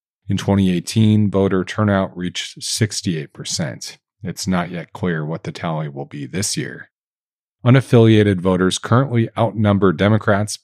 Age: 40-59